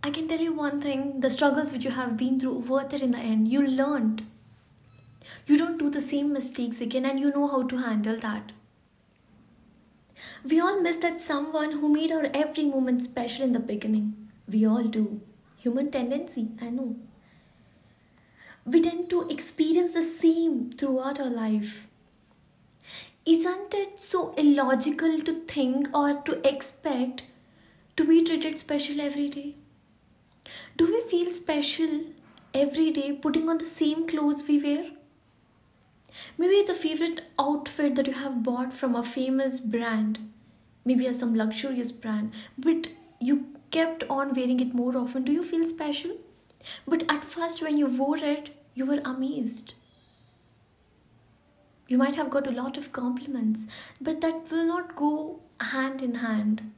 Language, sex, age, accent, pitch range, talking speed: English, female, 20-39, Indian, 250-315 Hz, 155 wpm